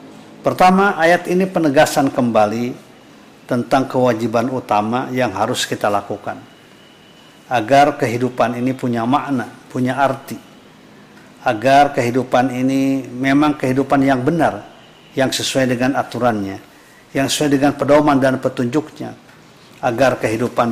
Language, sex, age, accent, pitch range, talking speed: Indonesian, male, 50-69, native, 120-150 Hz, 110 wpm